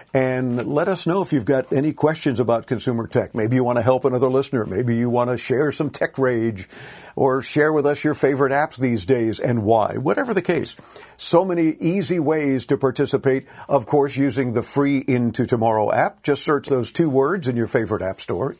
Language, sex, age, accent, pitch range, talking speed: English, male, 50-69, American, 130-150 Hz, 210 wpm